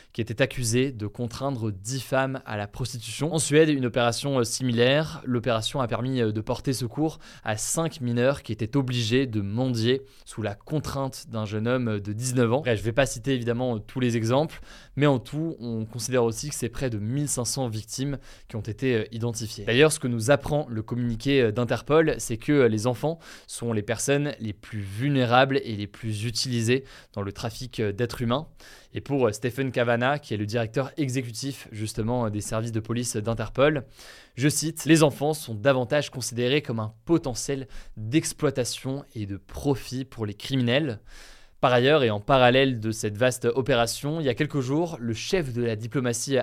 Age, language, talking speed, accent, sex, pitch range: 20-39, French, 180 wpm, French, male, 115-140 Hz